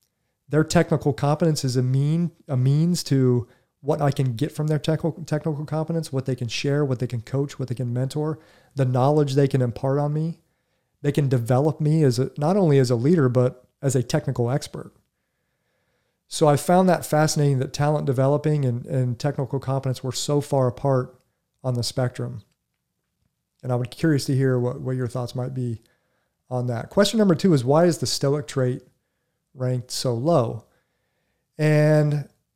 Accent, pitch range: American, 125-150 Hz